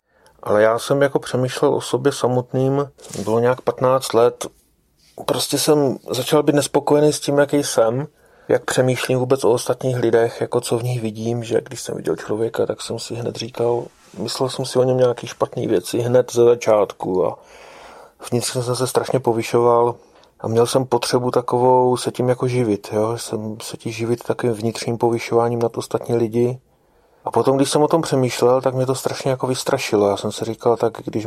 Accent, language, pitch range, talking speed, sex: native, Czech, 115-130 Hz, 190 wpm, male